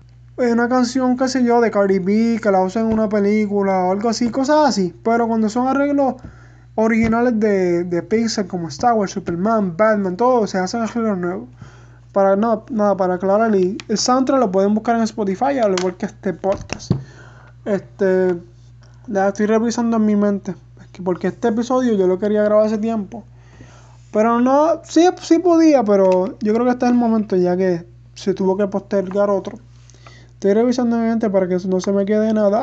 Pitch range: 185-230 Hz